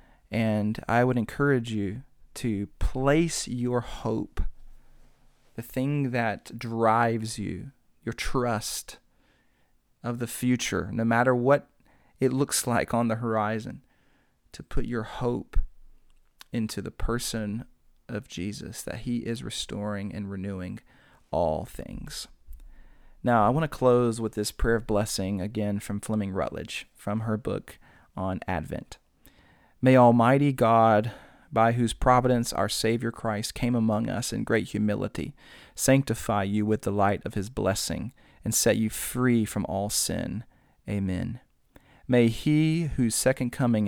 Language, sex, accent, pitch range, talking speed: English, male, American, 100-120 Hz, 135 wpm